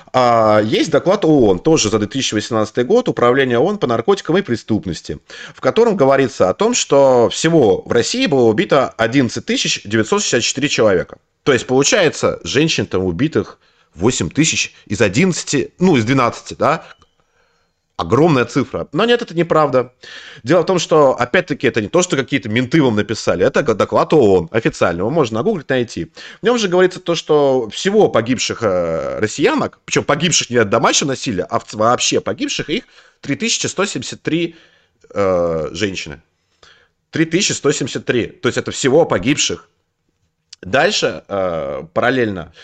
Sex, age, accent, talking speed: male, 30-49, native, 140 wpm